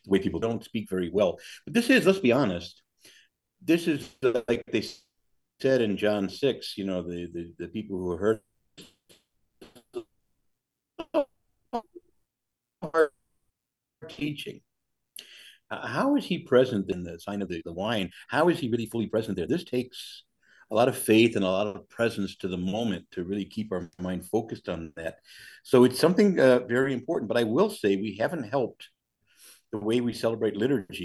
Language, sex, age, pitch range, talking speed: English, male, 50-69, 95-140 Hz, 180 wpm